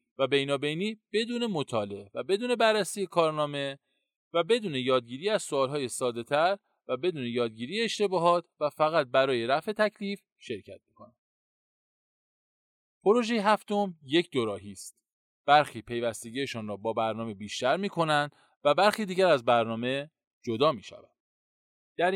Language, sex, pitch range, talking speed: Persian, male, 120-180 Hz, 125 wpm